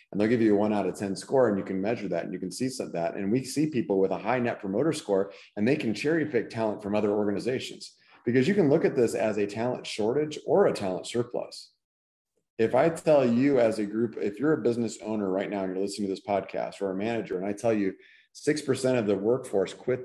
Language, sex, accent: English, male, American